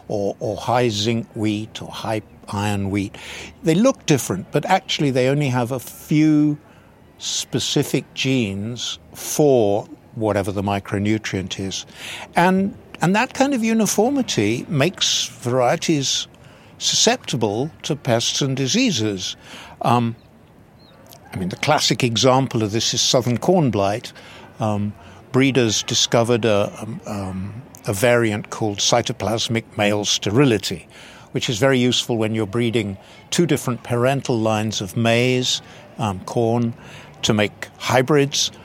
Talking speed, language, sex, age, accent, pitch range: 125 wpm, English, male, 60-79, British, 105-135 Hz